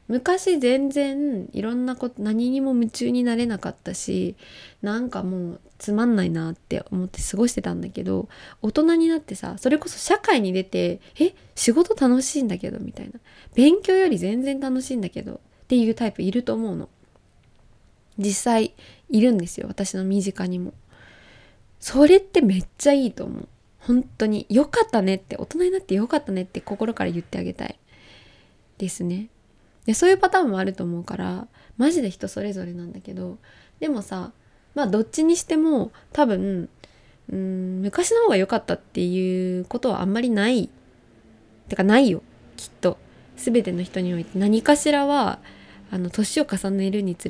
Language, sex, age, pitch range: Japanese, female, 20-39, 185-250 Hz